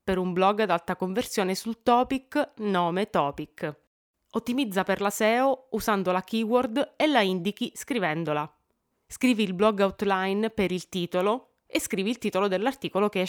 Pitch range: 180-235 Hz